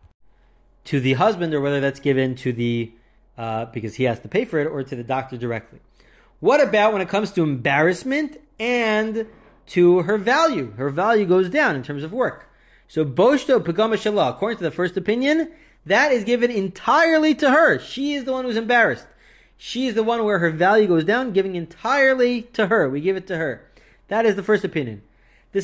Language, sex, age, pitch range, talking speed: English, male, 30-49, 140-220 Hz, 200 wpm